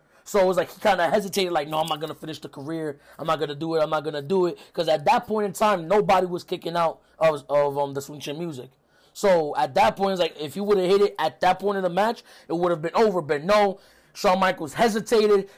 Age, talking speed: 20-39, 285 wpm